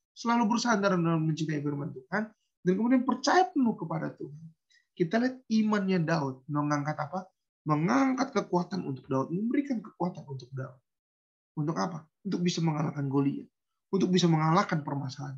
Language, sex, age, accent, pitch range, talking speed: Indonesian, male, 20-39, native, 140-190 Hz, 140 wpm